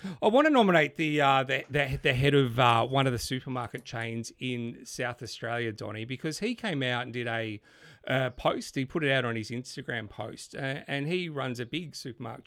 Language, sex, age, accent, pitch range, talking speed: English, male, 40-59, Australian, 125-160 Hz, 215 wpm